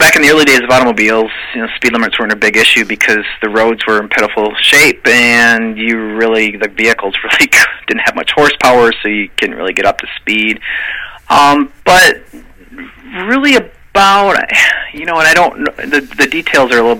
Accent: American